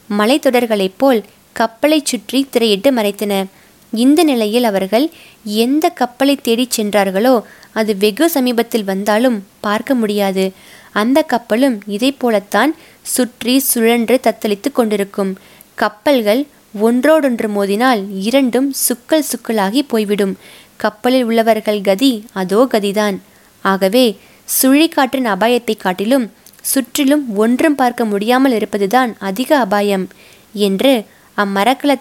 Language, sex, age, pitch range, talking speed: Tamil, female, 20-39, 205-260 Hz, 95 wpm